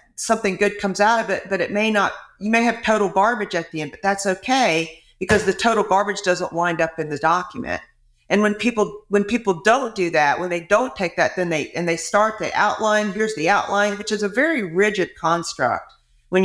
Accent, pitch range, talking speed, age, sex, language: American, 165-205 Hz, 225 wpm, 50-69, female, English